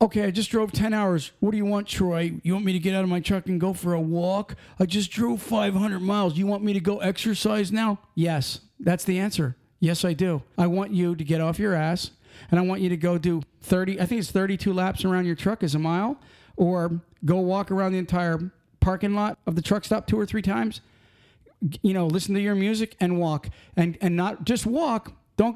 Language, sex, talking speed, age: English, male, 235 wpm, 40-59